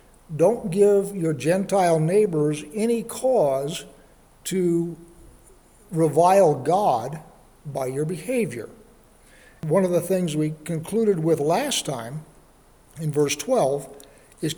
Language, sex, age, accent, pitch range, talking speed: English, male, 60-79, American, 155-190 Hz, 105 wpm